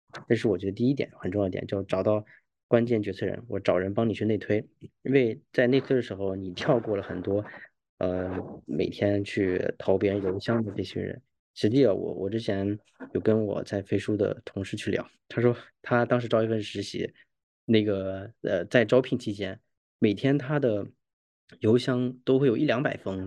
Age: 20-39